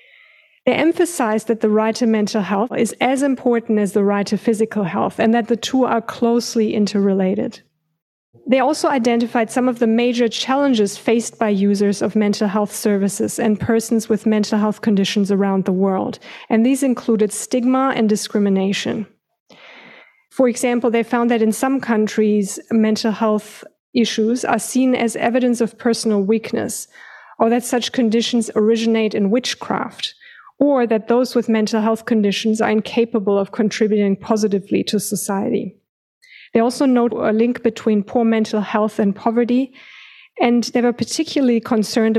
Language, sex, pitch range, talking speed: English, female, 210-240 Hz, 155 wpm